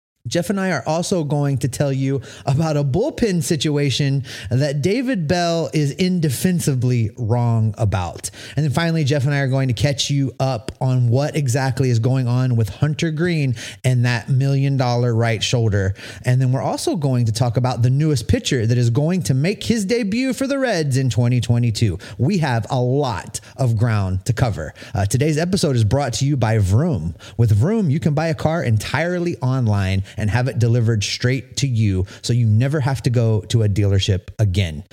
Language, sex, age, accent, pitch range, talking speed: English, male, 30-49, American, 115-155 Hz, 195 wpm